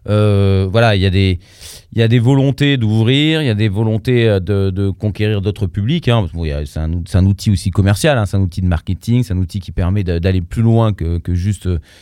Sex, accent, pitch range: male, French, 95-120 Hz